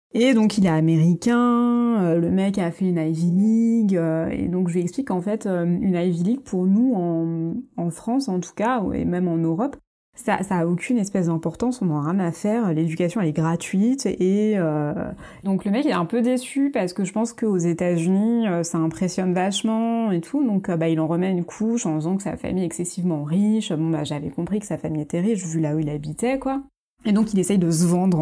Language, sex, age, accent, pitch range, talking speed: French, female, 20-39, French, 170-225 Hz, 230 wpm